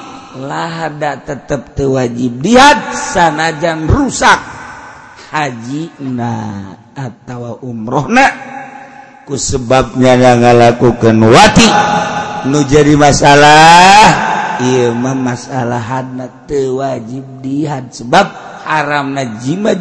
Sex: male